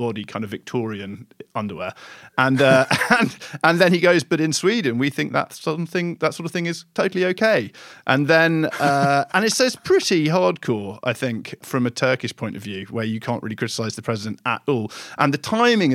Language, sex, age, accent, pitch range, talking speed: English, male, 40-59, British, 110-140 Hz, 205 wpm